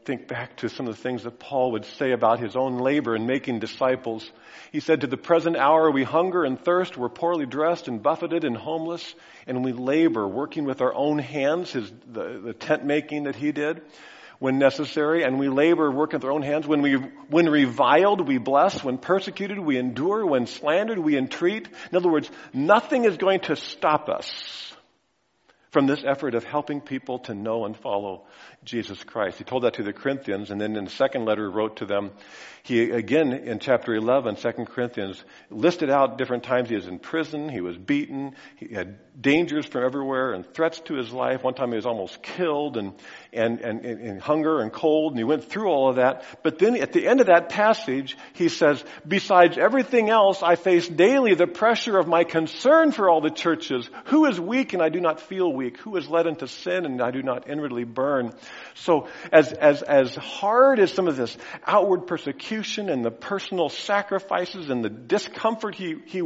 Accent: American